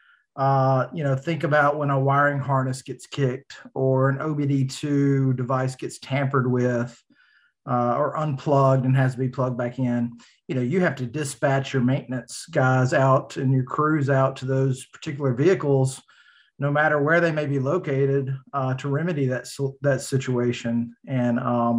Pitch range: 125-145 Hz